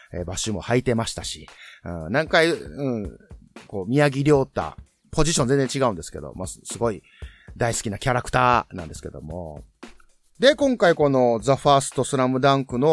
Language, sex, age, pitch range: Japanese, male, 30-49, 95-140 Hz